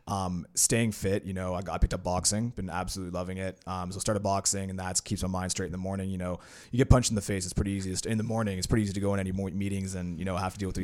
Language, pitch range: English, 95-105 Hz